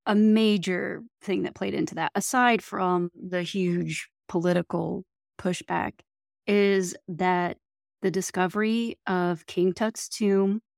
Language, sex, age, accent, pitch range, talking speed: English, female, 30-49, American, 185-215 Hz, 115 wpm